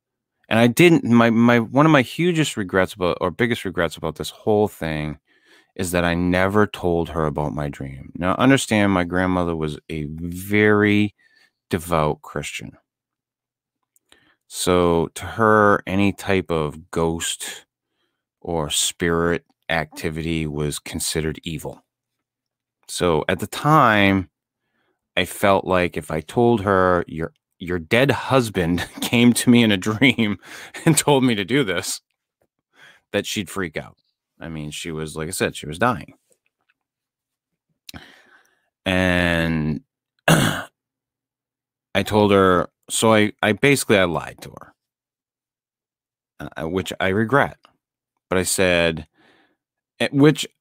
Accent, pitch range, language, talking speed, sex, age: American, 85-120 Hz, English, 130 wpm, male, 30-49